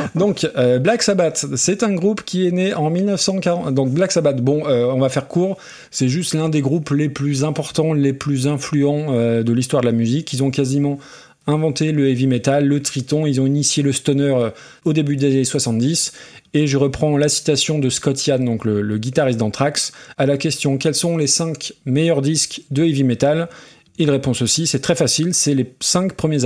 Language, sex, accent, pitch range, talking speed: French, male, French, 130-165 Hz, 215 wpm